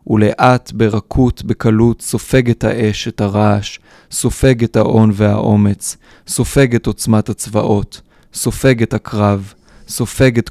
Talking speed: 90 wpm